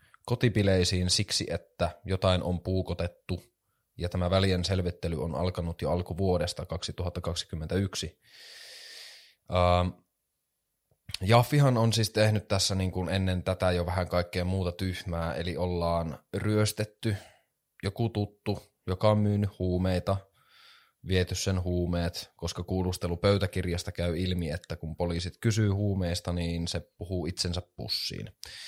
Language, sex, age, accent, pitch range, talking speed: Finnish, male, 20-39, native, 90-100 Hz, 115 wpm